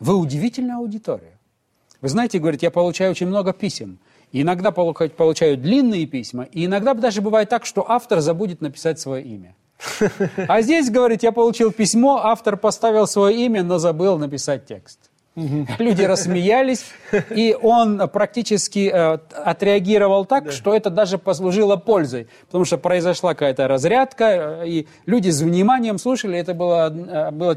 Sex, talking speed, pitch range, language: male, 140 wpm, 155-215 Hz, Russian